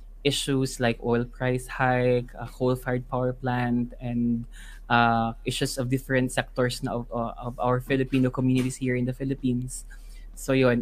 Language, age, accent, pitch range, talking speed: English, 20-39, Filipino, 125-135 Hz, 150 wpm